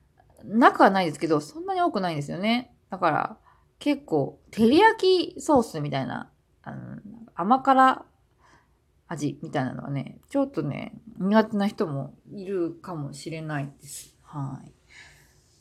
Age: 20-39